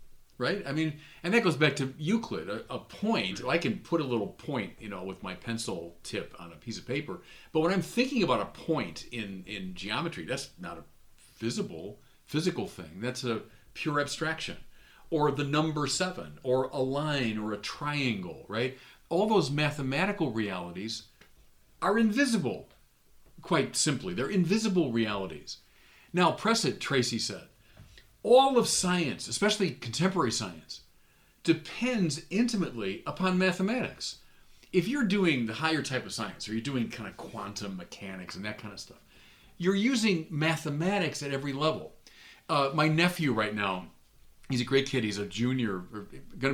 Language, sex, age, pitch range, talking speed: English, male, 40-59, 110-175 Hz, 160 wpm